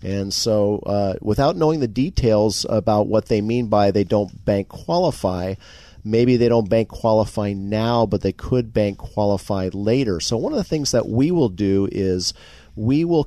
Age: 40-59